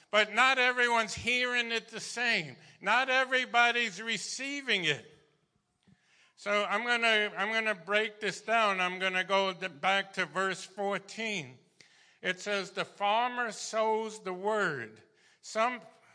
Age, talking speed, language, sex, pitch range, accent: 50-69, 140 wpm, English, male, 190-230 Hz, American